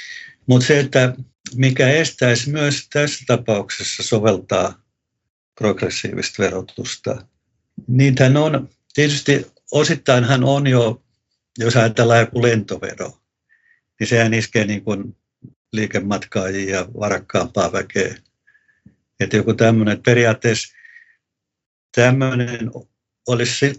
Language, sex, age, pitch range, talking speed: Finnish, male, 60-79, 110-140 Hz, 90 wpm